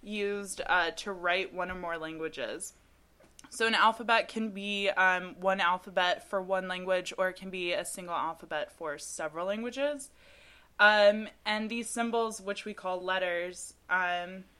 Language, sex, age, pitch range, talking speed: English, female, 20-39, 175-215 Hz, 155 wpm